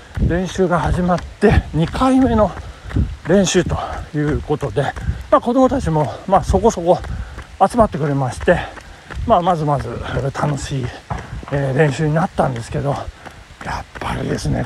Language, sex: Japanese, male